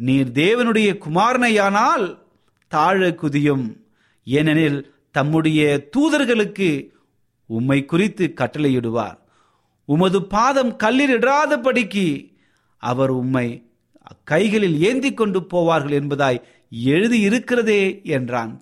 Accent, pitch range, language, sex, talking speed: native, 125-195 Hz, Tamil, male, 75 wpm